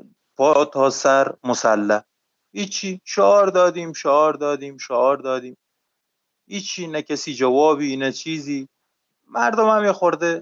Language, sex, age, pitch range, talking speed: Persian, male, 30-49, 130-160 Hz, 115 wpm